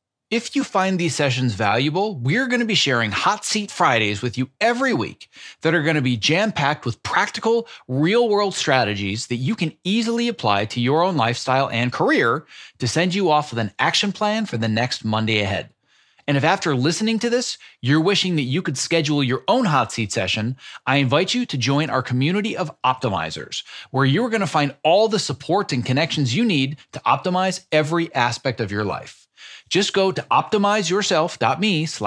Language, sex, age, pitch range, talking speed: English, male, 30-49, 125-195 Hz, 190 wpm